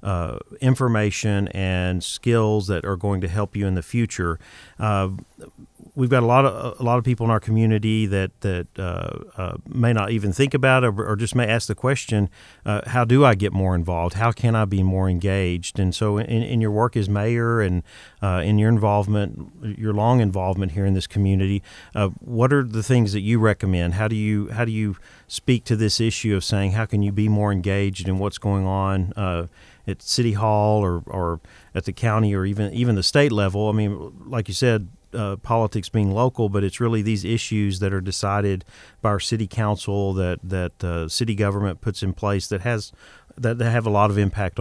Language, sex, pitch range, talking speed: English, male, 95-115 Hz, 215 wpm